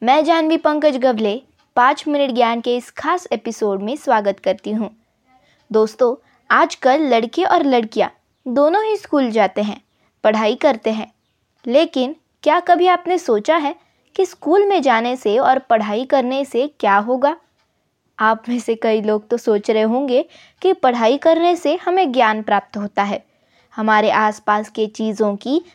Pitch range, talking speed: 215-295 Hz, 160 wpm